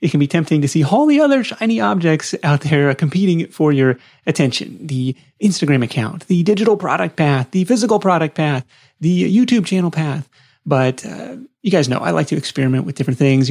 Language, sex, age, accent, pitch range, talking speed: English, male, 30-49, American, 135-185 Hz, 195 wpm